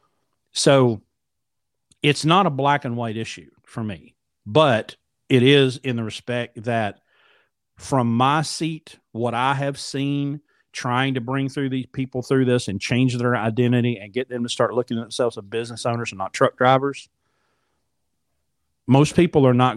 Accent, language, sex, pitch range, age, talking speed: American, English, male, 115-145 Hz, 40-59, 165 wpm